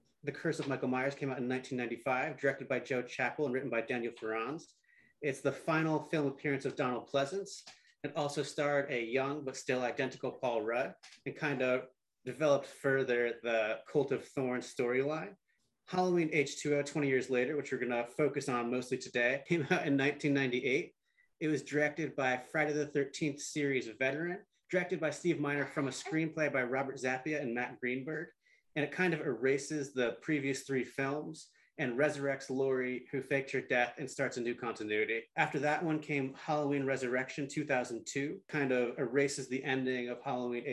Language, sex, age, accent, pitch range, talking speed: English, male, 30-49, American, 125-150 Hz, 175 wpm